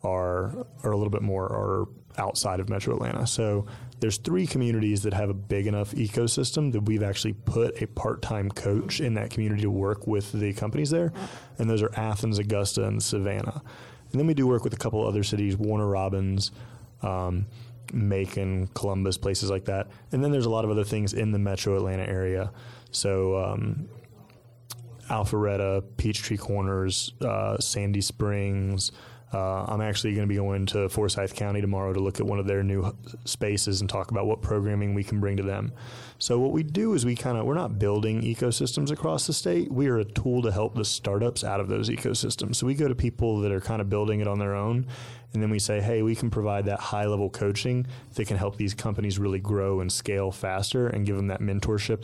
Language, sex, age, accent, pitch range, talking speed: English, male, 20-39, American, 100-120 Hz, 205 wpm